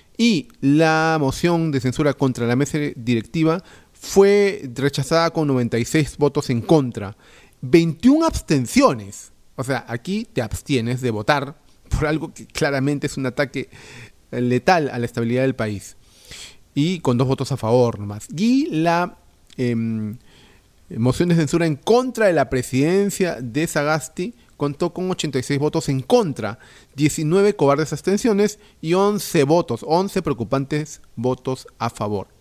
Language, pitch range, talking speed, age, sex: Spanish, 115-155 Hz, 140 wpm, 40-59, male